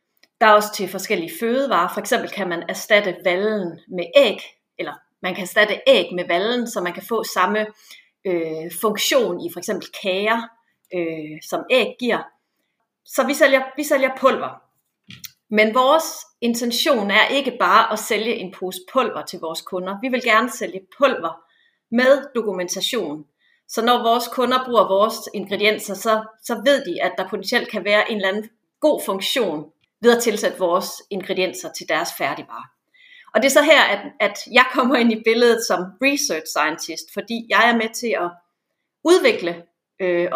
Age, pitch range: 30-49, 185-250 Hz